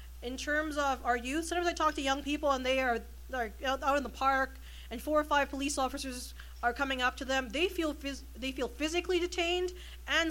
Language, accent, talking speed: English, American, 225 wpm